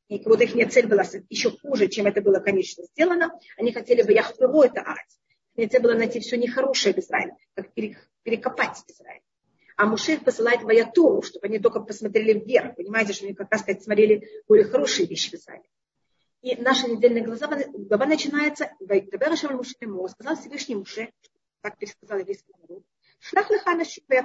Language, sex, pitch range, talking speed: Russian, female, 215-290 Hz, 170 wpm